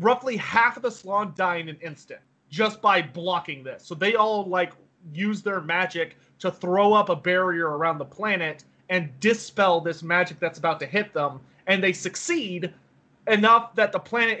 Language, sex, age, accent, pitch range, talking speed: English, male, 30-49, American, 170-210 Hz, 185 wpm